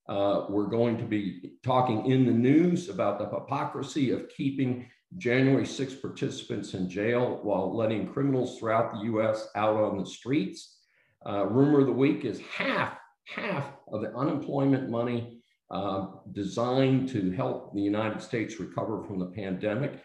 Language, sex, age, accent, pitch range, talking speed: English, male, 50-69, American, 105-135 Hz, 155 wpm